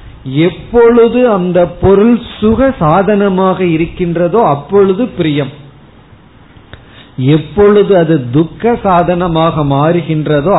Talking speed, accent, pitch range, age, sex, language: 70 wpm, native, 140-190 Hz, 50-69, male, Tamil